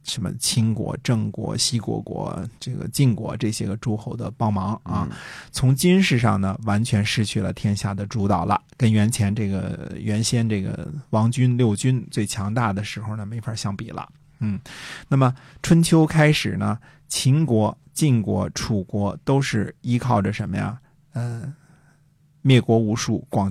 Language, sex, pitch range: Chinese, male, 105-135 Hz